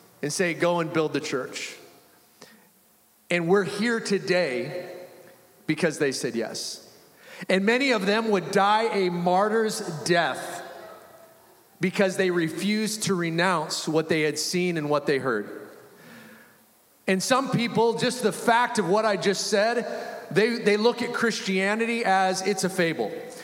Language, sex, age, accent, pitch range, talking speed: English, male, 30-49, American, 175-210 Hz, 145 wpm